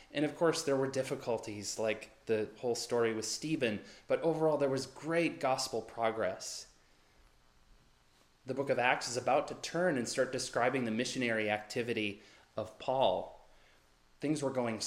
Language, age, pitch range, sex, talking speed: English, 30-49, 105-130 Hz, male, 155 wpm